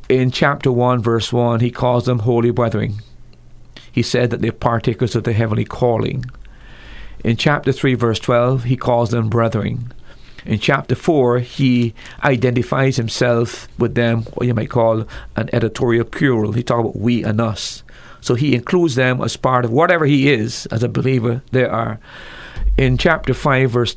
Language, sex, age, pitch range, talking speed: English, male, 40-59, 115-130 Hz, 170 wpm